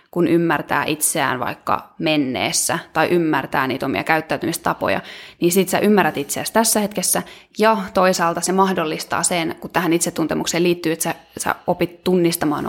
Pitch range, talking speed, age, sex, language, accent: 165-195 Hz, 145 wpm, 20-39, female, Finnish, native